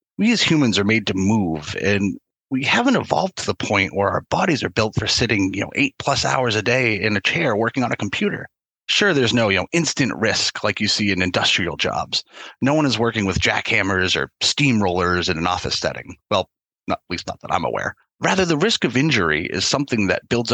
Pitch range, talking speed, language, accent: 100-135 Hz, 220 wpm, English, American